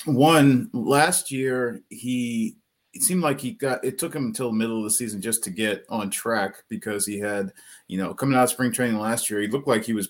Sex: male